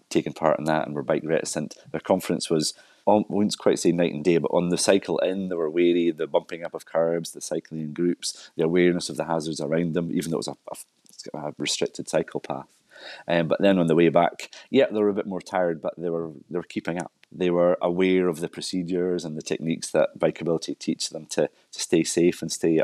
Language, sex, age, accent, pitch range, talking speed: English, male, 30-49, British, 80-90 Hz, 245 wpm